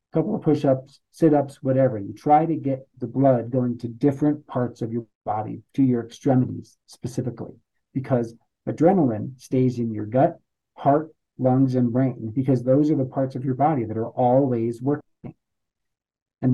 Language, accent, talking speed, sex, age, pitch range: English, American, 165 wpm, male, 50-69, 120-145 Hz